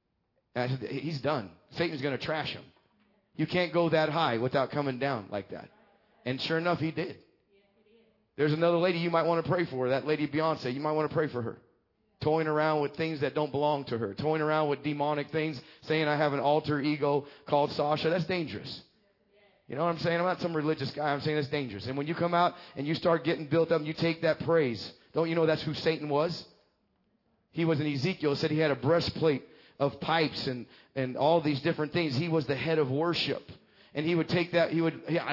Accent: American